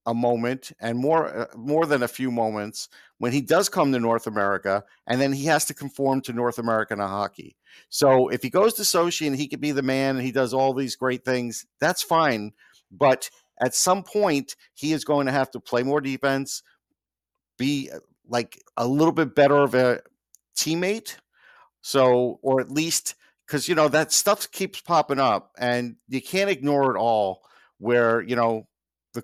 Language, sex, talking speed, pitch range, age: English, male, 195 wpm, 115-145 Hz, 50-69